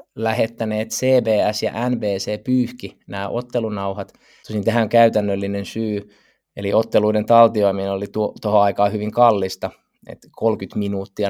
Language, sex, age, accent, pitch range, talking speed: Finnish, male, 20-39, native, 100-115 Hz, 115 wpm